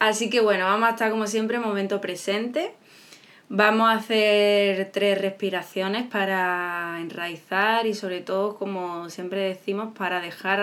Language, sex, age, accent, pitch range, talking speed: Spanish, female, 20-39, Spanish, 180-215 Hz, 145 wpm